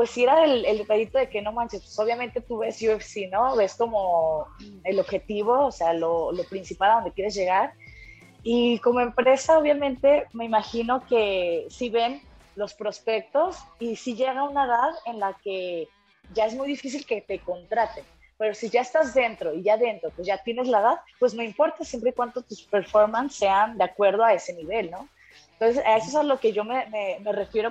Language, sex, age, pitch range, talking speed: Spanish, female, 20-39, 190-245 Hz, 210 wpm